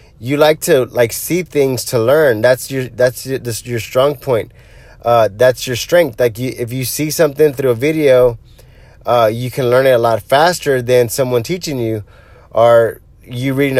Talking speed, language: 190 wpm, English